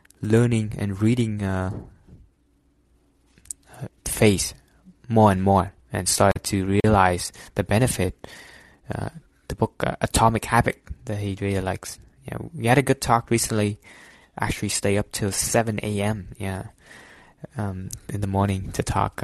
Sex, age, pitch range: male, 20-39, 95-110 Hz